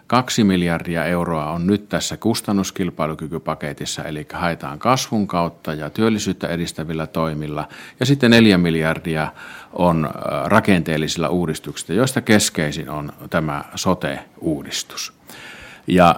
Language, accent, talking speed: Finnish, native, 105 wpm